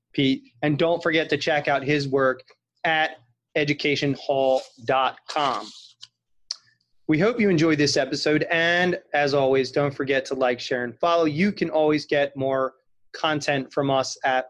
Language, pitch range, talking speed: English, 135-165 Hz, 150 wpm